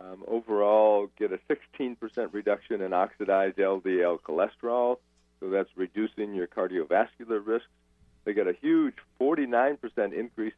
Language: English